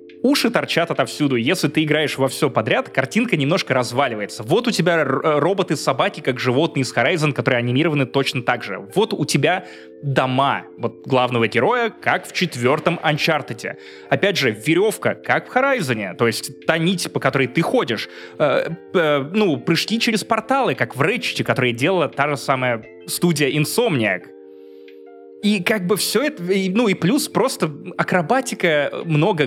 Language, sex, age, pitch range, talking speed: Russian, male, 20-39, 125-165 Hz, 155 wpm